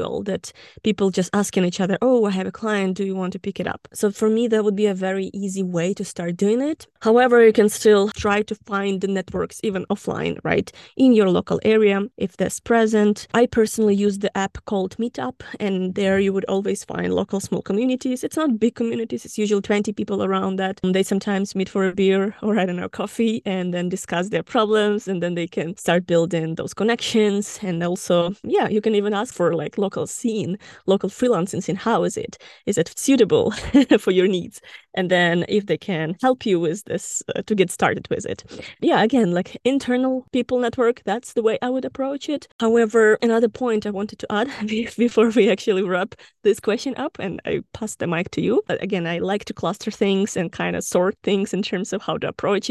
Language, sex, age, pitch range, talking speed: English, female, 20-39, 185-225 Hz, 215 wpm